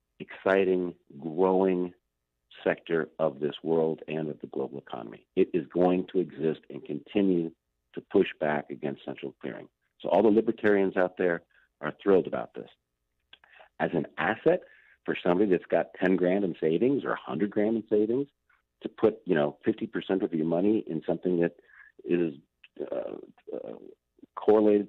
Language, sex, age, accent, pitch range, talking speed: English, male, 50-69, American, 85-115 Hz, 155 wpm